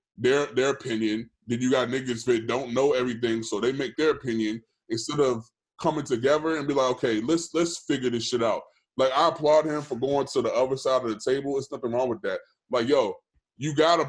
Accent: American